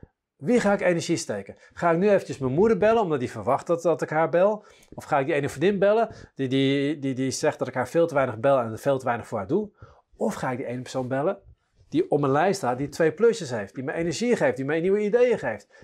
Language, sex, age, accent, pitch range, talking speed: Dutch, male, 40-59, Dutch, 125-175 Hz, 265 wpm